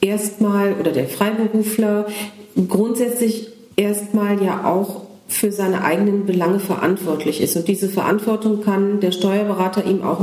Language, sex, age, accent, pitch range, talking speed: German, female, 40-59, German, 190-225 Hz, 130 wpm